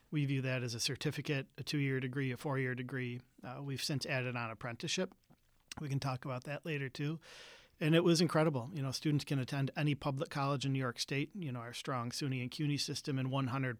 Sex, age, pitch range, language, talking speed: male, 40-59, 130-150 Hz, English, 220 wpm